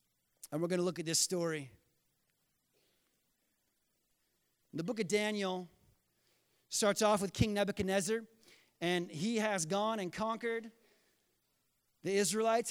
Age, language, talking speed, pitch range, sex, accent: 30-49, English, 120 wpm, 140-210 Hz, male, American